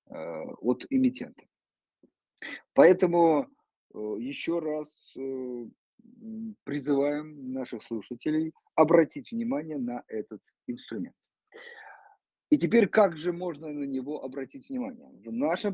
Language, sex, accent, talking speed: Russian, male, native, 90 wpm